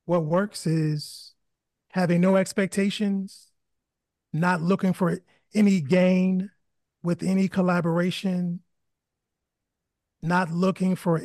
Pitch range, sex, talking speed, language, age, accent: 165-190 Hz, male, 90 wpm, English, 30-49, American